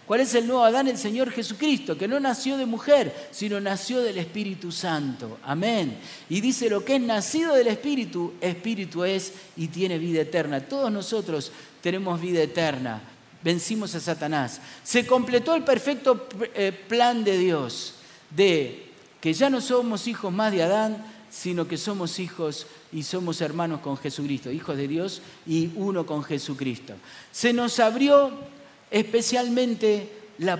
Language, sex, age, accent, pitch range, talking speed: Spanish, male, 40-59, Argentinian, 160-235 Hz, 155 wpm